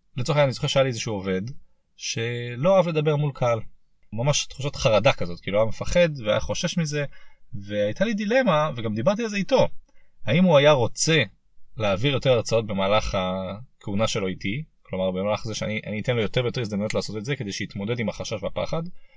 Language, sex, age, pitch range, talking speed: Hebrew, male, 20-39, 110-155 Hz, 190 wpm